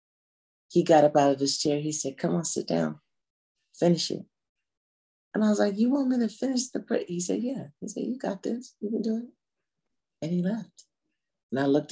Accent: American